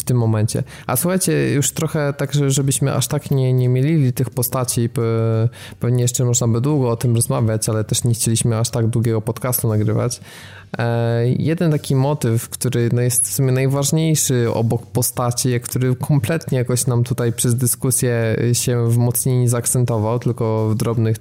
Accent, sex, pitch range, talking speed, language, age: native, male, 115-125 Hz, 160 wpm, Polish, 20-39